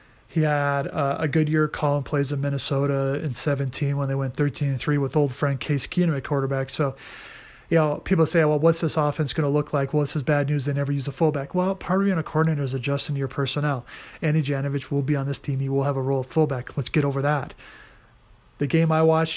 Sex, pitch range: male, 140-155 Hz